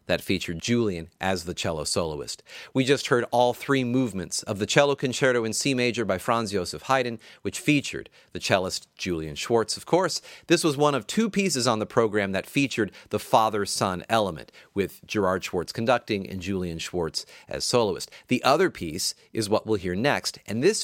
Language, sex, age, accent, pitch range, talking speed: English, male, 40-59, American, 100-140 Hz, 185 wpm